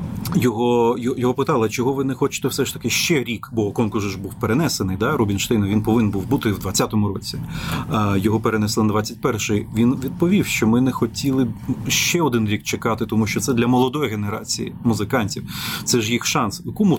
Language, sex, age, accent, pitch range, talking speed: Ukrainian, male, 30-49, native, 105-125 Hz, 185 wpm